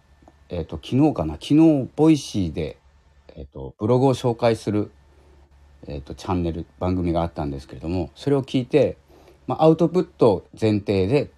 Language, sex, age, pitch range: Japanese, male, 40-59, 75-110 Hz